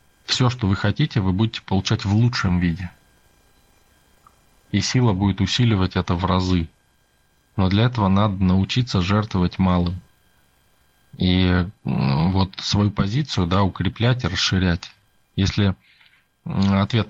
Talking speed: 115 wpm